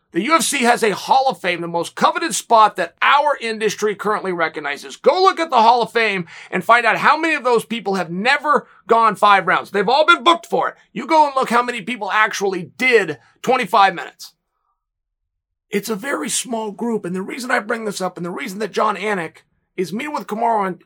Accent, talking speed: American, 220 wpm